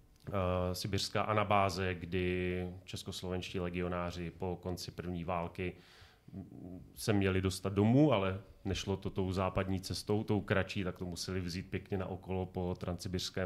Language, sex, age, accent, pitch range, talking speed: Czech, male, 30-49, native, 95-115 Hz, 130 wpm